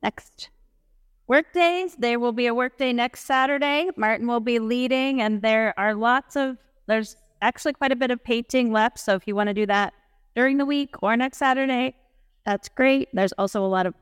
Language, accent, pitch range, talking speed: English, American, 200-260 Hz, 195 wpm